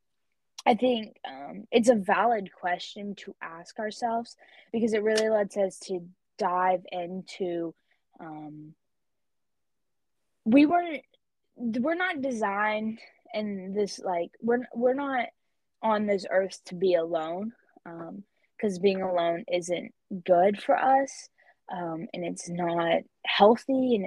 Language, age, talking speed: English, 10-29, 125 wpm